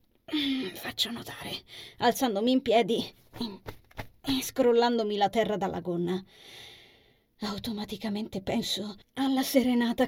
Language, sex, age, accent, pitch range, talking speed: Italian, female, 20-39, native, 185-245 Hz, 90 wpm